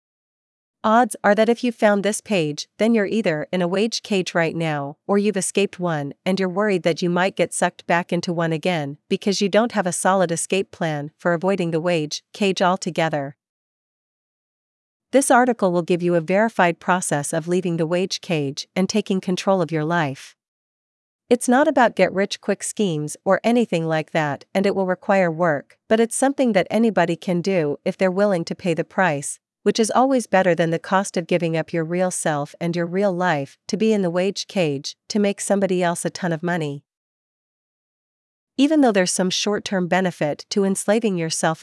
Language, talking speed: English, 195 wpm